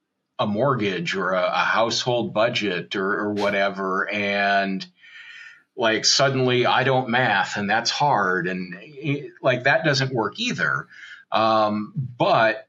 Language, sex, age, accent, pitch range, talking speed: English, male, 40-59, American, 110-135 Hz, 130 wpm